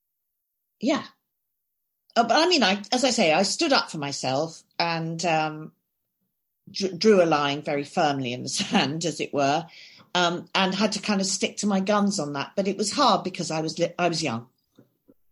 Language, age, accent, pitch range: English, 50-69, British, 165-215 Hz